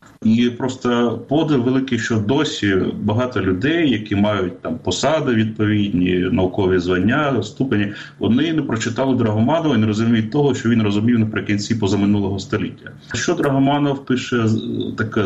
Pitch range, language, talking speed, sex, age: 105-130 Hz, Ukrainian, 135 wpm, male, 30-49